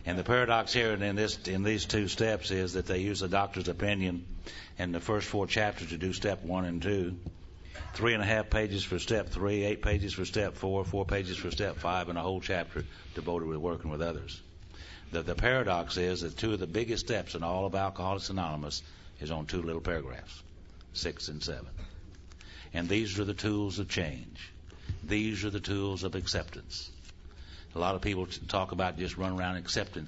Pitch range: 85-95 Hz